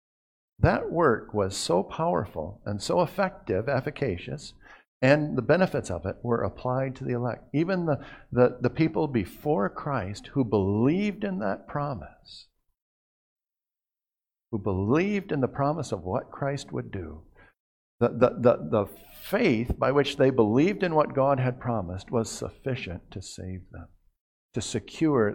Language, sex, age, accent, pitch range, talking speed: English, male, 50-69, American, 95-145 Hz, 145 wpm